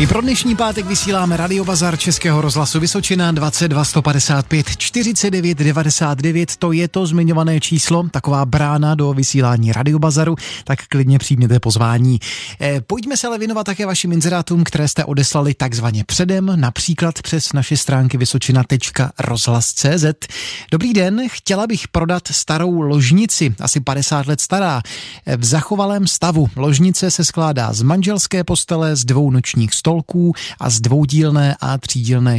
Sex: male